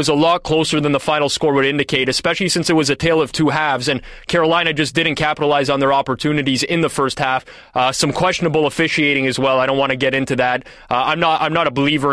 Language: English